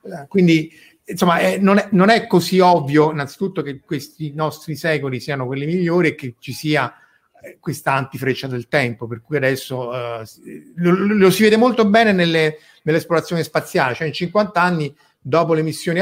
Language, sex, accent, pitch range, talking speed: Italian, male, native, 130-170 Hz, 170 wpm